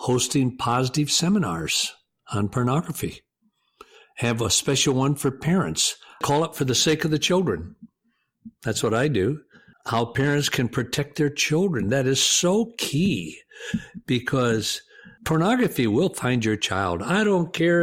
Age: 60-79